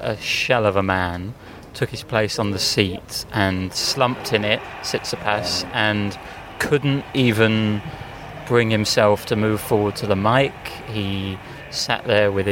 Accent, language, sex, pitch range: British, English, male, 105-120 Hz